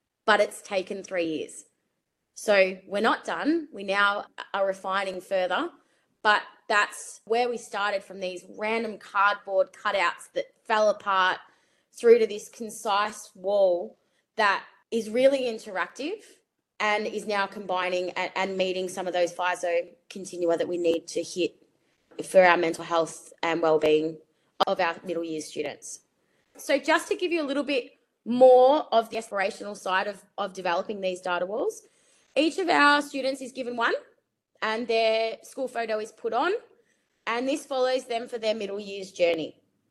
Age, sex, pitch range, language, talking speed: 20-39, female, 185-255 Hz, English, 160 wpm